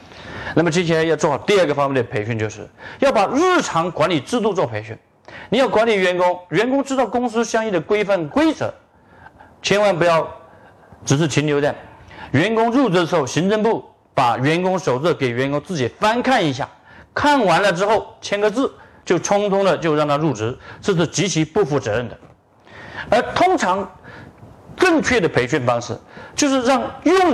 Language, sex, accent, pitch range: Chinese, male, native, 140-220 Hz